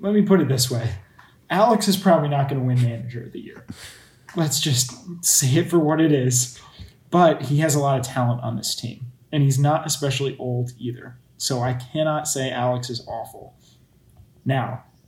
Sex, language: male, English